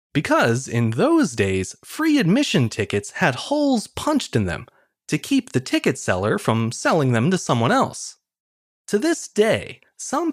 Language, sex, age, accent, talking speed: English, male, 30-49, American, 155 wpm